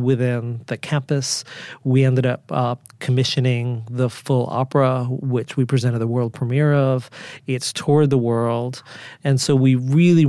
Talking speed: 150 wpm